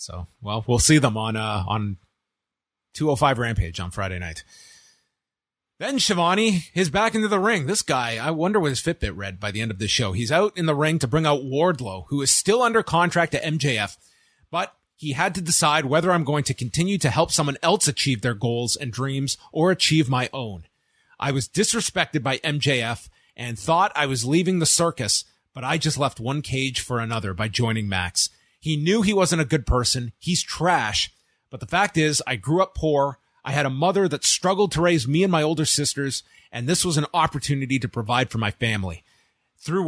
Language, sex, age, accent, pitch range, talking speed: English, male, 30-49, American, 125-170 Hz, 205 wpm